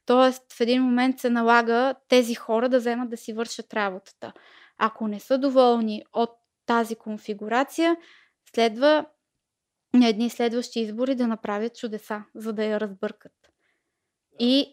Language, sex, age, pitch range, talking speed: Bulgarian, female, 20-39, 230-270 Hz, 135 wpm